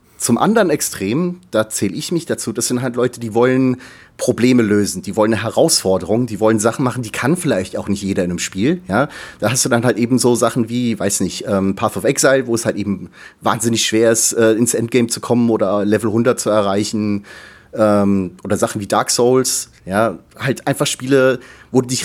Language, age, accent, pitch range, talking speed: German, 30-49, German, 100-125 Hz, 205 wpm